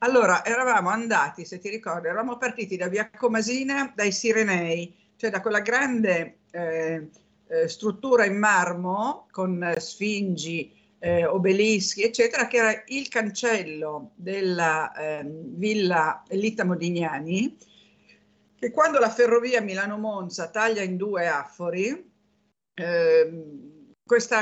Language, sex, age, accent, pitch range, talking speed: Italian, female, 50-69, native, 175-225 Hz, 115 wpm